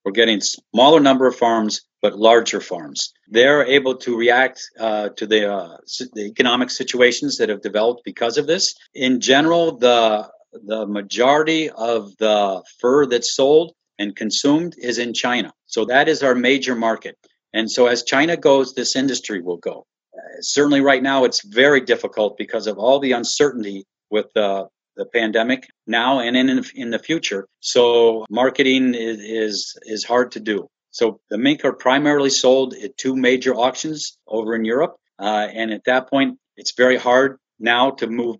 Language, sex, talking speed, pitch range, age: English, male, 175 wpm, 110-135 Hz, 50-69